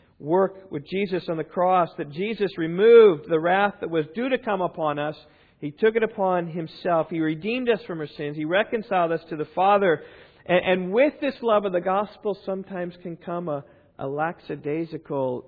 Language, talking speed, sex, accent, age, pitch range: English, 190 wpm, male, American, 50-69, 155-200 Hz